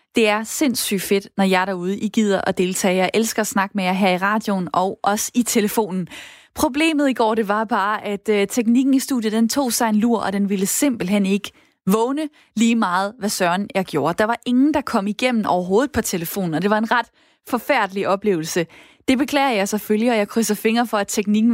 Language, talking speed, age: Danish, 215 wpm, 20-39